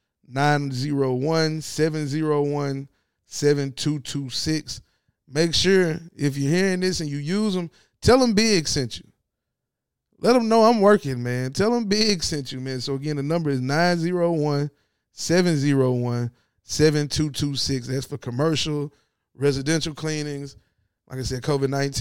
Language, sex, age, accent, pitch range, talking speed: English, male, 20-39, American, 130-165 Hz, 115 wpm